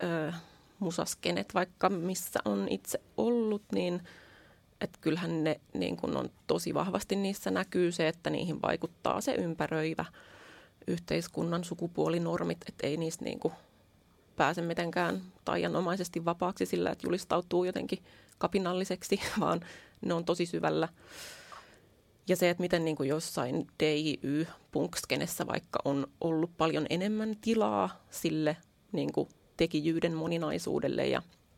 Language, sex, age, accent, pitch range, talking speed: Finnish, female, 30-49, native, 155-180 Hz, 120 wpm